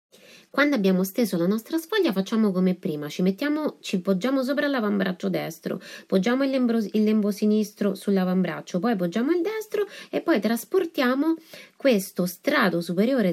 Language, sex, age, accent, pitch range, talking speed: Italian, female, 30-49, native, 180-260 Hz, 140 wpm